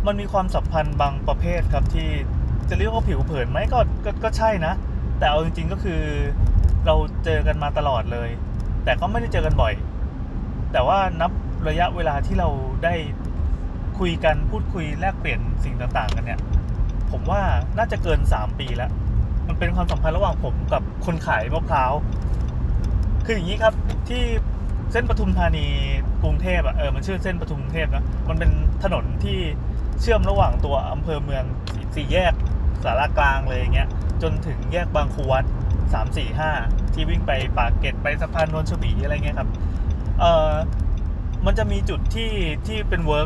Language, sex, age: Thai, male, 20-39